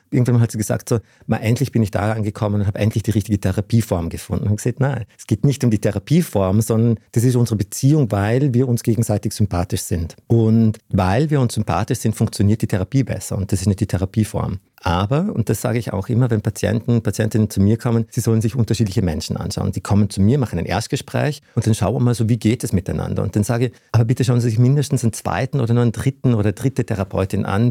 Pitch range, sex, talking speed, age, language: 100-120 Hz, male, 240 wpm, 50-69, German